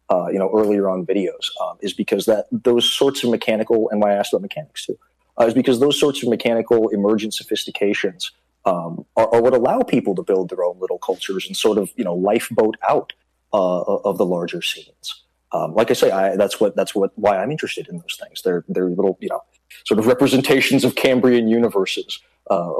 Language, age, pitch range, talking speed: English, 30-49, 105-170 Hz, 215 wpm